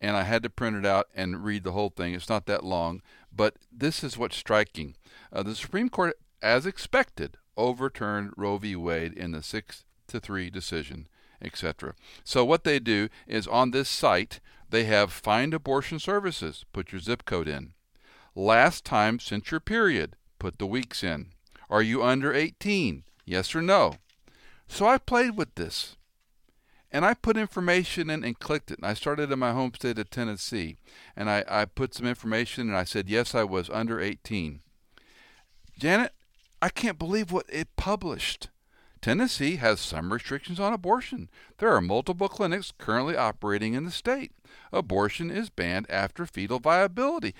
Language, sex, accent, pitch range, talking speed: English, male, American, 105-165 Hz, 170 wpm